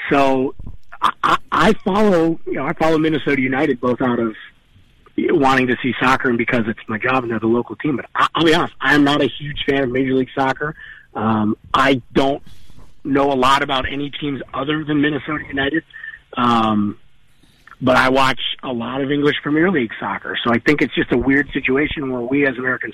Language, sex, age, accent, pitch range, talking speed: English, male, 40-59, American, 125-145 Hz, 200 wpm